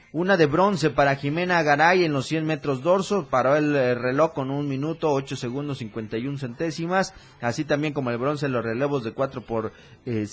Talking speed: 200 wpm